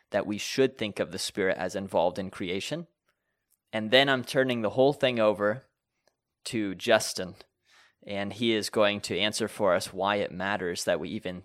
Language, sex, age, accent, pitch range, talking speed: English, male, 20-39, American, 110-140 Hz, 185 wpm